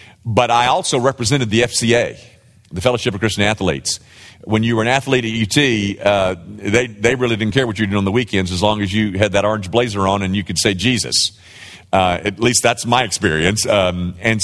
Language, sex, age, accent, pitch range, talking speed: English, male, 50-69, American, 105-155 Hz, 215 wpm